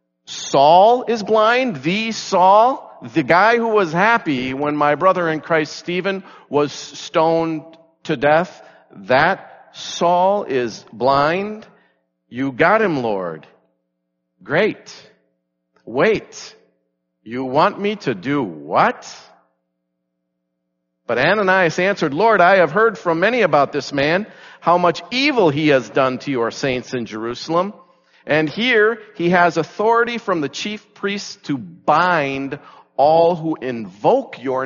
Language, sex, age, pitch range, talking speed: English, male, 50-69, 120-180 Hz, 130 wpm